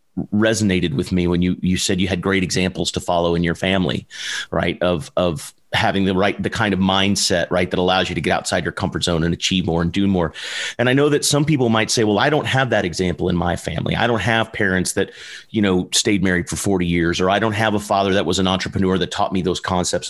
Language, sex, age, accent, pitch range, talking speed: English, male, 30-49, American, 90-115 Hz, 255 wpm